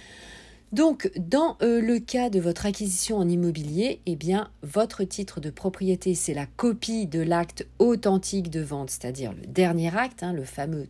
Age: 40-59